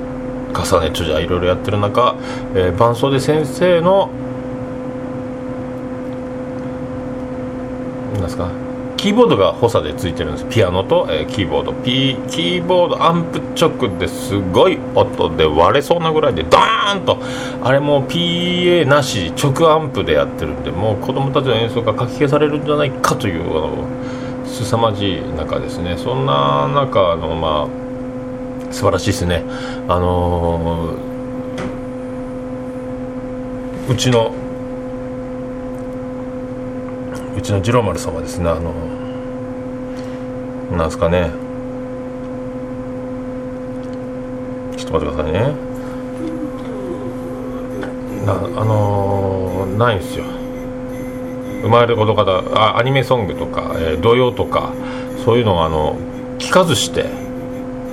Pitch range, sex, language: 120-125 Hz, male, Japanese